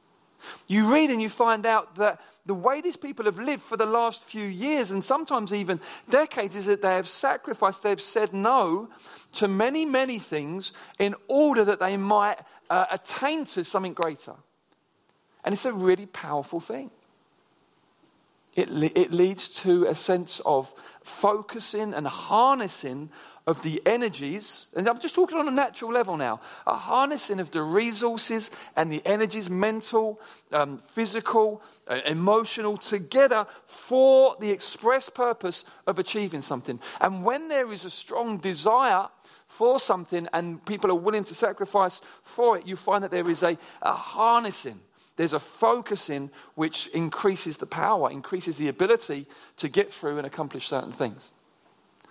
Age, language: 40-59, English